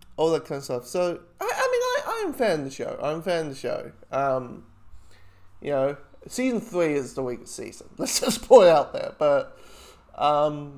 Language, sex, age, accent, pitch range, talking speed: English, male, 20-39, Australian, 125-195 Hz, 205 wpm